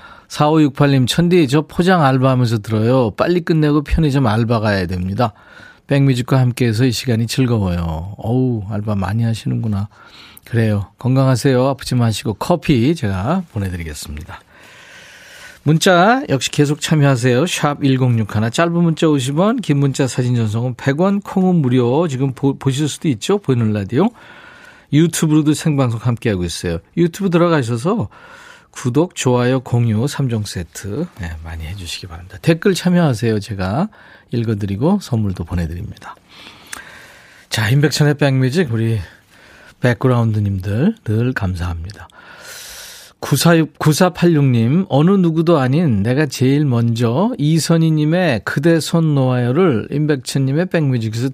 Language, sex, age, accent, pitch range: Korean, male, 40-59, native, 110-160 Hz